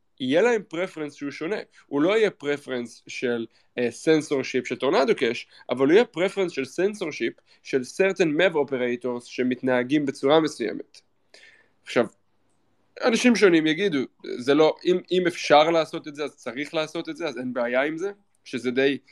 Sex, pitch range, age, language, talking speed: male, 125-150 Hz, 20-39, Hebrew, 165 wpm